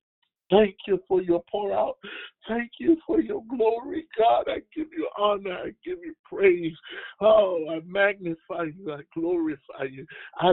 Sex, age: male, 60-79